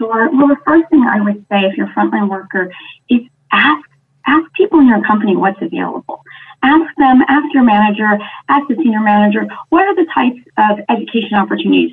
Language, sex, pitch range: English, female, 195-275 Hz